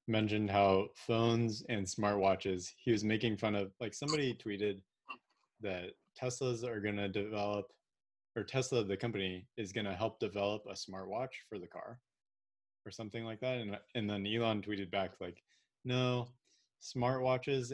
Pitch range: 95-120 Hz